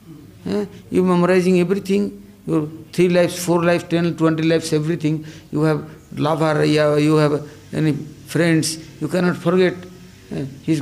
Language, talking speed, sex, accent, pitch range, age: English, 150 wpm, male, Indian, 135-180 Hz, 60-79